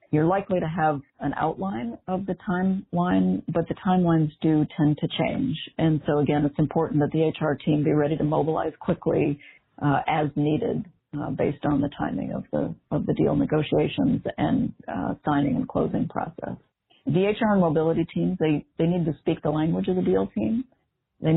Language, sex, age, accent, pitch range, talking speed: English, female, 50-69, American, 150-165 Hz, 190 wpm